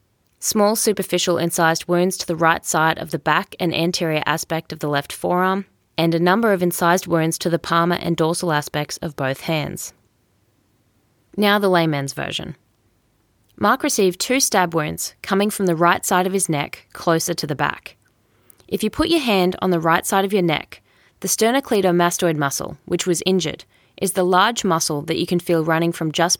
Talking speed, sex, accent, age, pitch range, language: 190 wpm, female, Australian, 20-39, 140-180 Hz, English